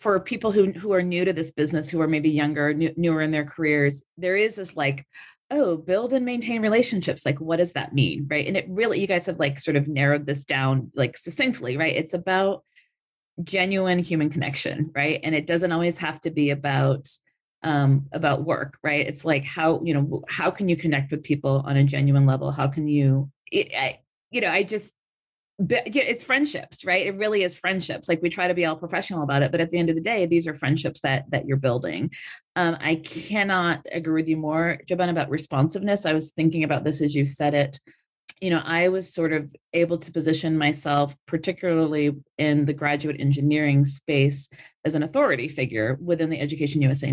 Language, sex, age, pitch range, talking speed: English, female, 30-49, 145-180 Hz, 210 wpm